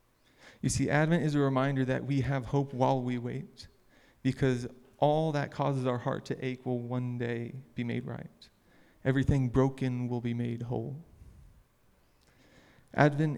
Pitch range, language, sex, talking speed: 120-135 Hz, English, male, 150 wpm